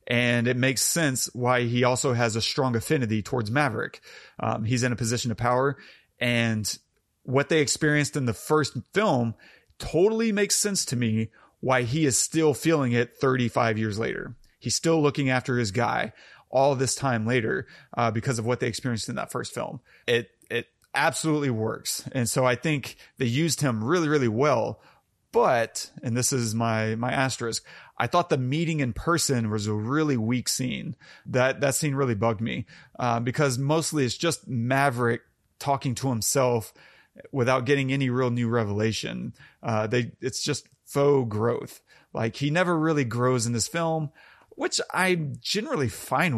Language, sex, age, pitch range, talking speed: English, male, 30-49, 120-145 Hz, 170 wpm